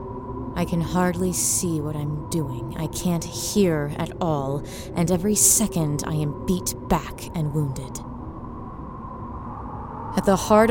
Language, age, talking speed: English, 30-49, 135 wpm